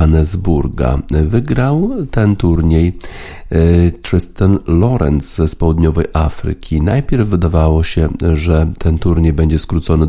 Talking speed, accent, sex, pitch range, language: 100 wpm, native, male, 75-90 Hz, Polish